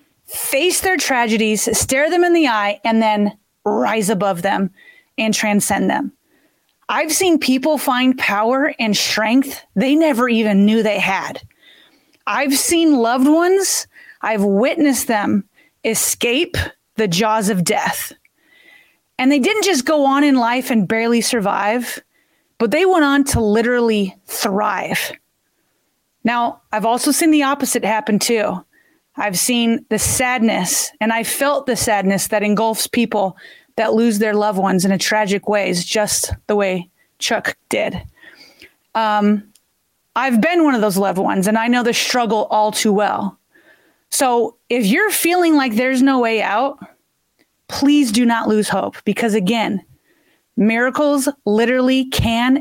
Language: English